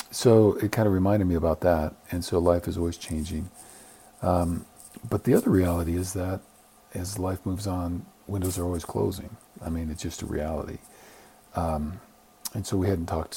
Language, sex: English, male